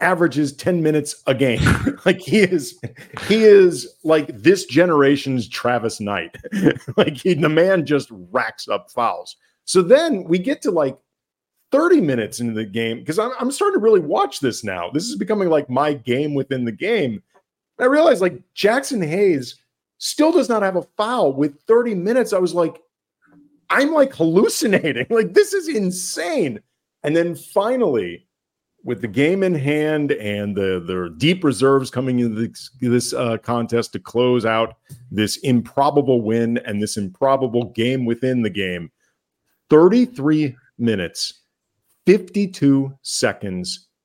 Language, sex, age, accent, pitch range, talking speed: English, male, 40-59, American, 120-185 Hz, 150 wpm